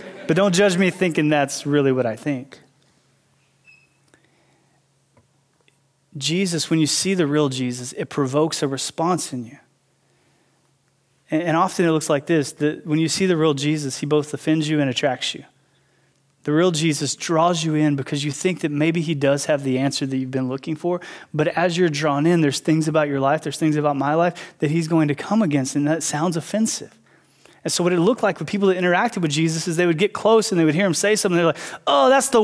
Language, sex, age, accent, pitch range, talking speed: English, male, 20-39, American, 150-215 Hz, 220 wpm